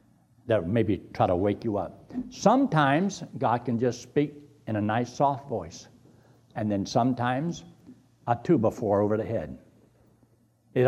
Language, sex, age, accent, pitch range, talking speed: English, male, 60-79, American, 105-125 Hz, 145 wpm